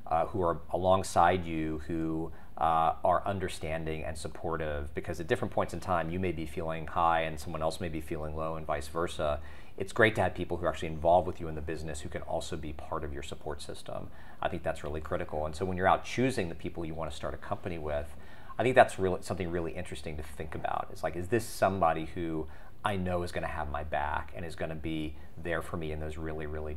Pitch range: 80-90 Hz